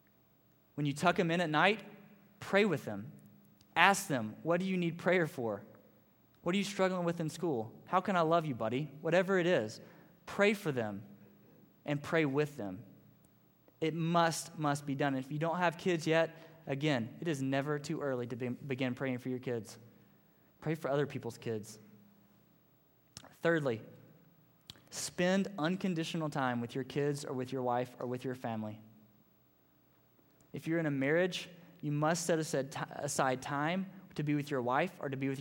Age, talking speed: 20-39, 175 wpm